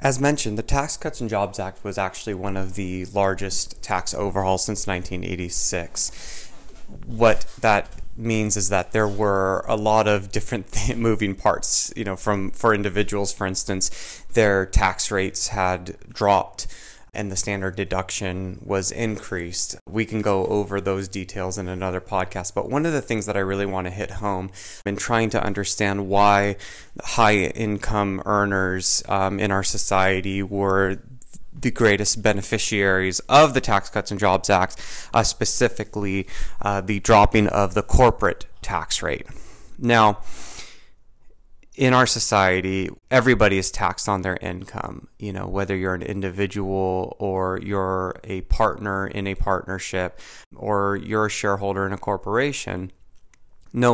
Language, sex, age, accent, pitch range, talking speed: English, male, 30-49, American, 95-110 Hz, 150 wpm